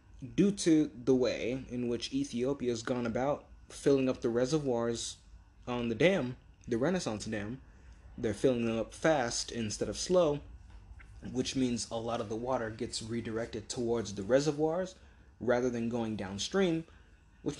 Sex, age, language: male, 20-39, English